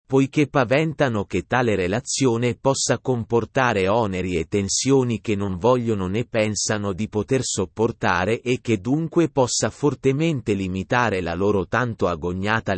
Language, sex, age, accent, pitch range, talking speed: Italian, male, 30-49, native, 100-135 Hz, 130 wpm